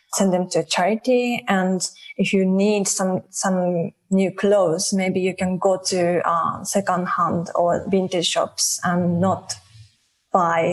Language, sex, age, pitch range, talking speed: English, female, 20-39, 175-195 Hz, 145 wpm